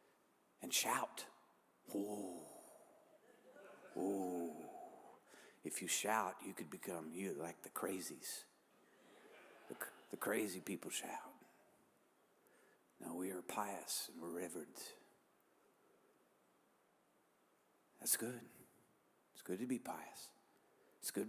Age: 50-69